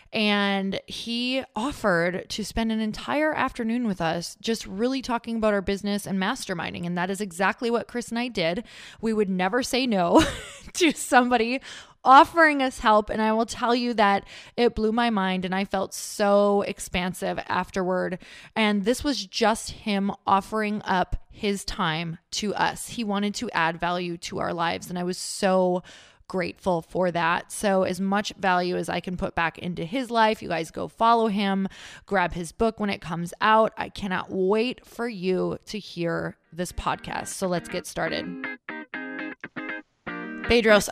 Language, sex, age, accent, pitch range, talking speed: English, female, 20-39, American, 185-230 Hz, 170 wpm